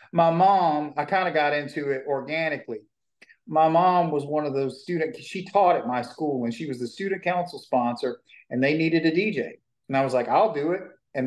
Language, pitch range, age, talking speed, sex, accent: English, 145-195 Hz, 40-59, 220 wpm, male, American